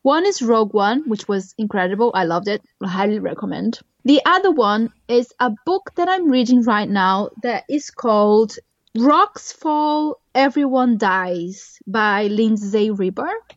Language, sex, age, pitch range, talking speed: English, female, 20-39, 210-285 Hz, 150 wpm